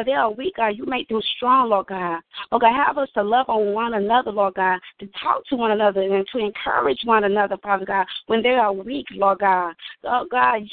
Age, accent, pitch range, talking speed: 20-39, American, 200-245 Hz, 235 wpm